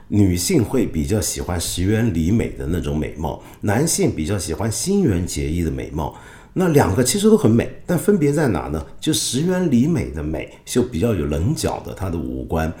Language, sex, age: Chinese, male, 50-69